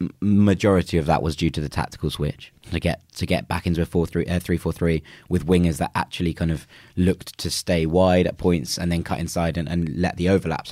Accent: British